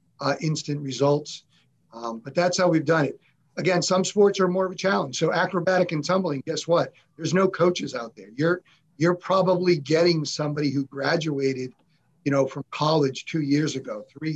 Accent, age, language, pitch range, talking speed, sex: American, 50-69, English, 140-165 Hz, 185 wpm, male